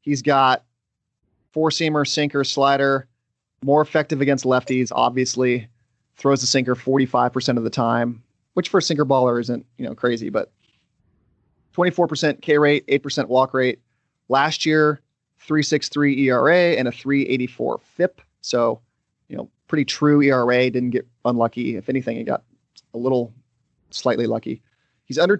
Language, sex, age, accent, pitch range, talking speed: English, male, 30-49, American, 120-145 Hz, 145 wpm